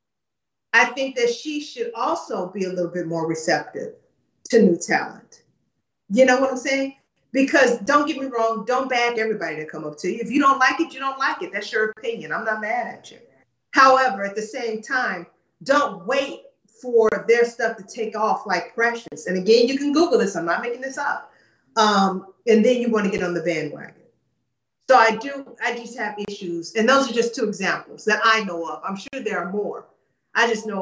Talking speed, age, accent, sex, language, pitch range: 215 wpm, 40-59, American, female, English, 195-255 Hz